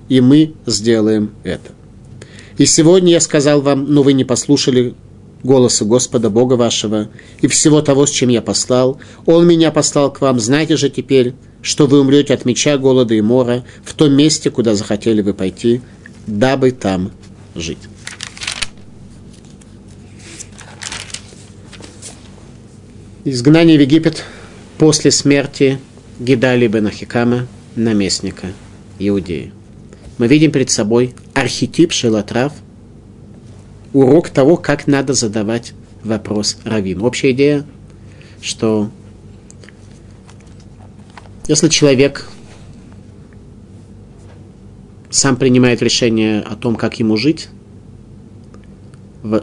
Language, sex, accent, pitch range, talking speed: Russian, male, native, 105-130 Hz, 105 wpm